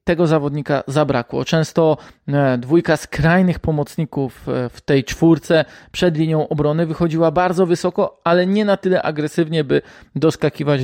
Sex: male